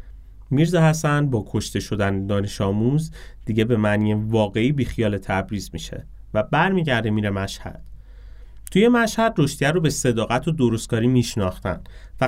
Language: Persian